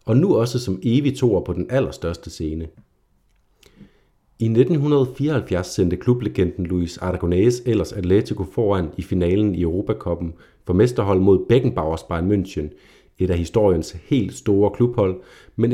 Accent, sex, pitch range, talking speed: native, male, 90-115 Hz, 135 wpm